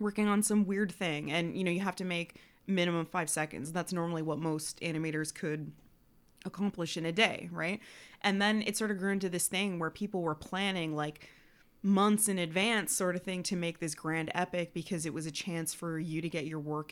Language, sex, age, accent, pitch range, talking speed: English, female, 20-39, American, 155-185 Hz, 220 wpm